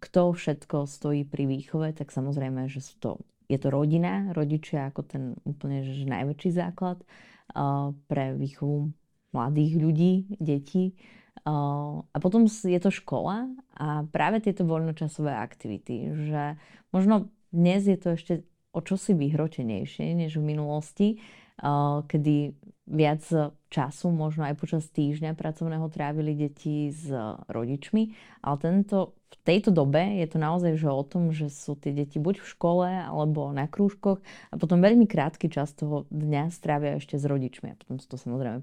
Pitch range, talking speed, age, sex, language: 145-180 Hz, 150 wpm, 20-39, female, Slovak